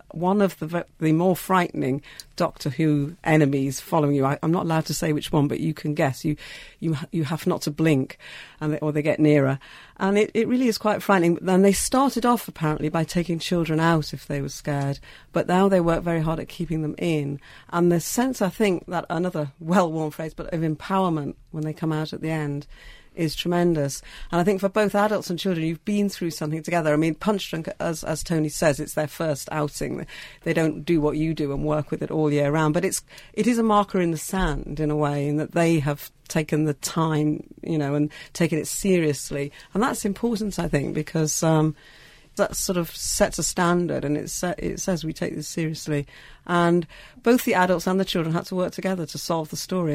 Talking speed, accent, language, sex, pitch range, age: 225 wpm, British, English, female, 150-180 Hz, 50-69